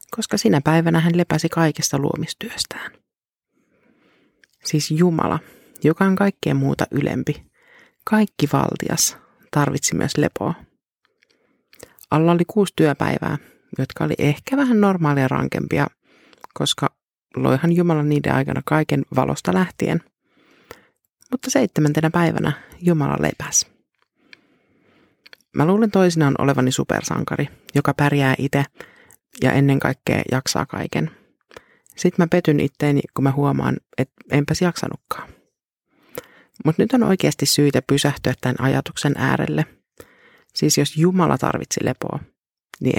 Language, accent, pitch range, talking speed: Finnish, native, 140-175 Hz, 110 wpm